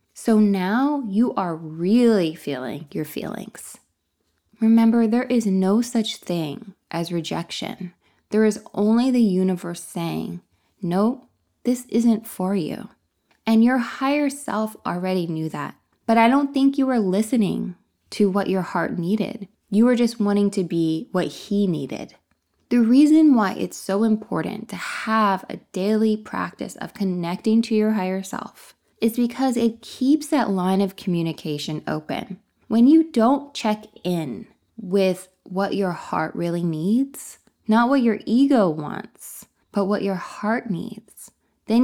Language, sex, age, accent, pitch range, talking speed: English, female, 20-39, American, 180-235 Hz, 150 wpm